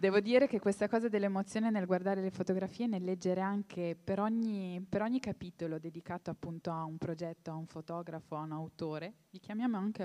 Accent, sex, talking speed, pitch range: native, female, 195 wpm, 165-205 Hz